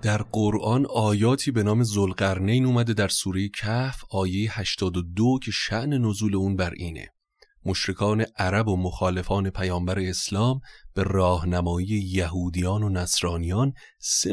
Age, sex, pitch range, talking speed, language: 30-49, male, 90-110 Hz, 125 wpm, Persian